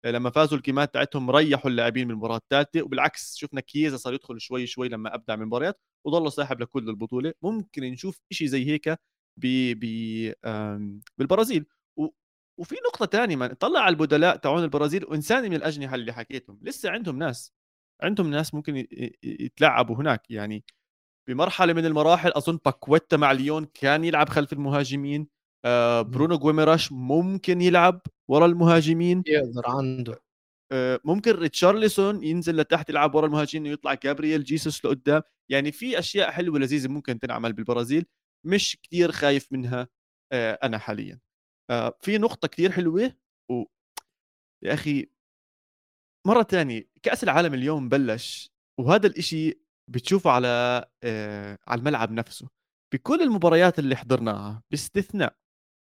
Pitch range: 125-170 Hz